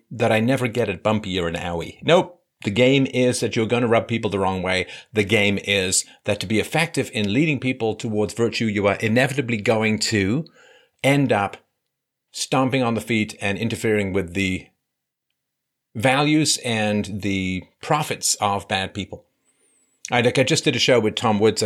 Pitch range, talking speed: 100-130 Hz, 175 wpm